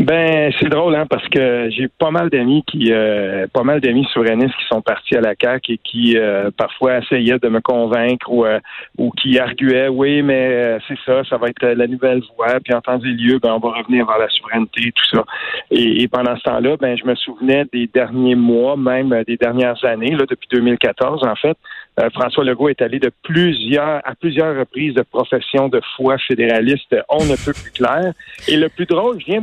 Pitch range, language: 125-155 Hz, French